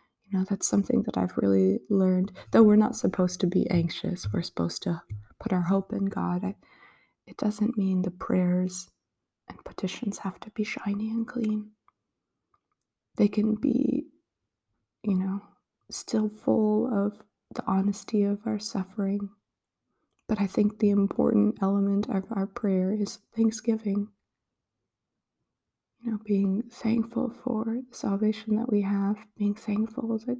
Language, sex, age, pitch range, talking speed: English, female, 20-39, 190-225 Hz, 145 wpm